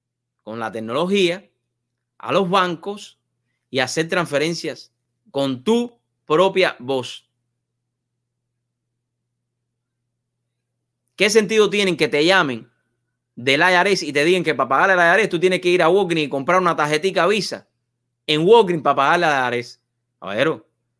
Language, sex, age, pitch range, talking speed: English, male, 30-49, 120-175 Hz, 135 wpm